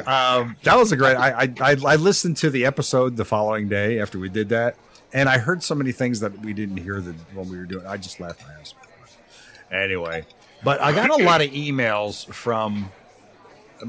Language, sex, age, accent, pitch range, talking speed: English, male, 50-69, American, 110-155 Hz, 210 wpm